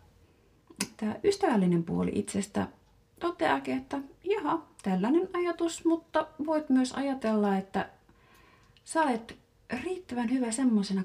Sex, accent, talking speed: female, native, 105 wpm